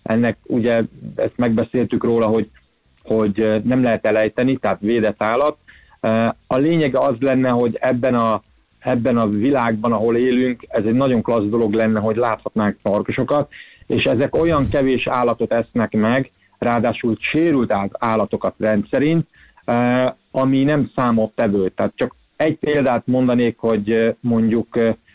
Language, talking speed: Hungarian, 135 wpm